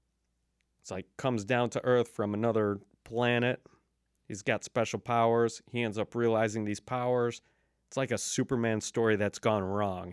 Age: 30-49